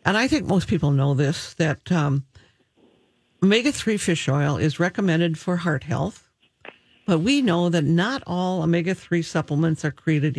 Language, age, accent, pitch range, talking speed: English, 60-79, American, 150-195 Hz, 155 wpm